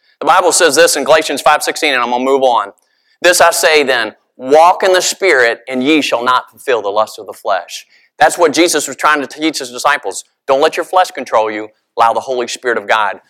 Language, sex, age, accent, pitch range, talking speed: English, male, 30-49, American, 130-180 Hz, 235 wpm